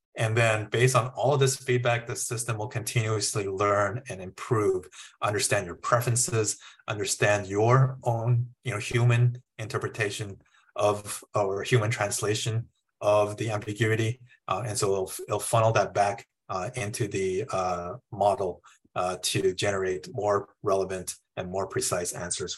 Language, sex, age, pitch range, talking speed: English, male, 30-49, 105-125 Hz, 145 wpm